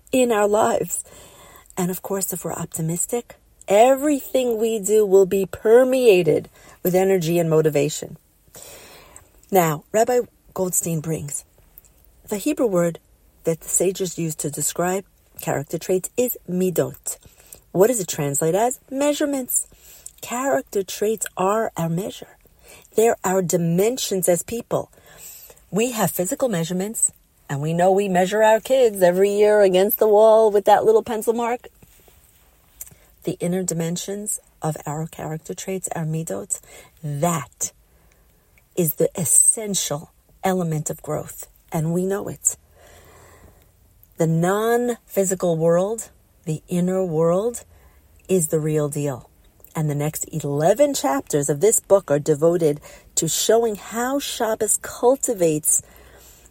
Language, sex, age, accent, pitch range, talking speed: English, female, 40-59, American, 155-215 Hz, 125 wpm